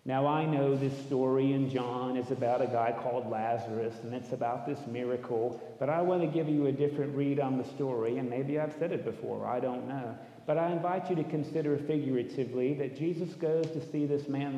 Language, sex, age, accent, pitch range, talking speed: English, male, 40-59, American, 120-145 Hz, 220 wpm